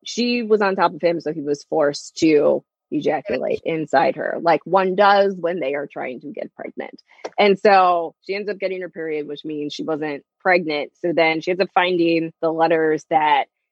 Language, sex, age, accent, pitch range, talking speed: English, female, 20-39, American, 165-215 Hz, 200 wpm